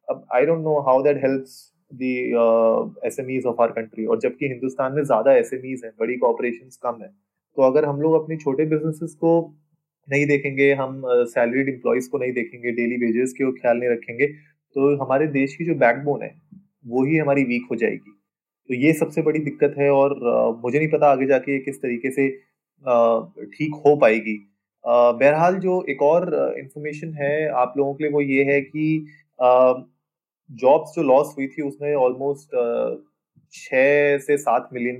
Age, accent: 20-39, native